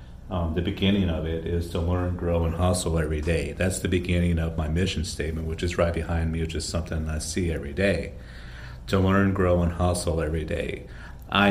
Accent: American